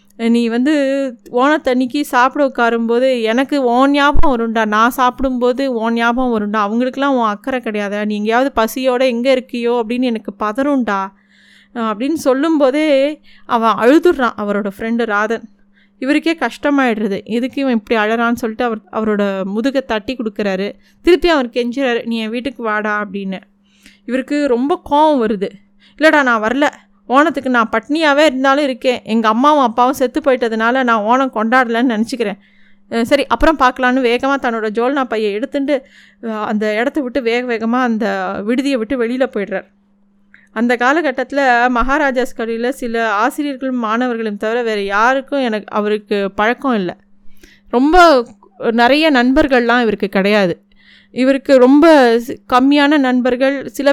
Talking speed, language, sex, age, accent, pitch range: 130 wpm, Tamil, female, 20-39, native, 220-270 Hz